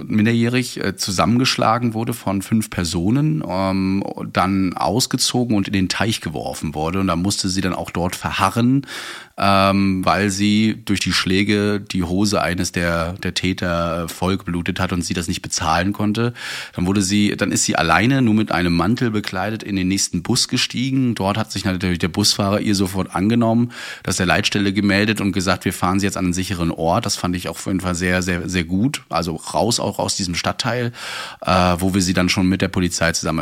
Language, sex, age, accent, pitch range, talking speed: German, male, 30-49, German, 90-105 Hz, 200 wpm